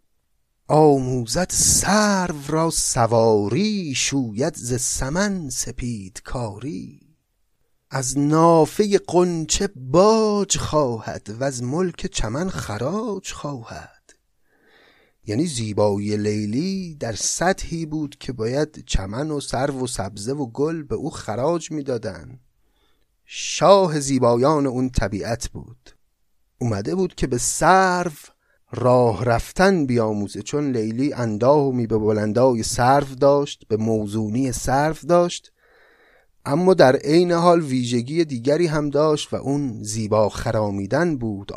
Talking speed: 110 wpm